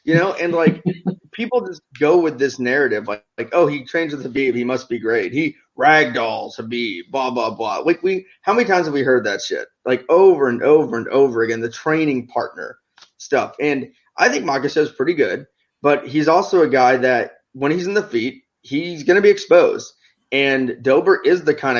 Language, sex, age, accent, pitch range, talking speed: English, male, 20-39, American, 130-175 Hz, 210 wpm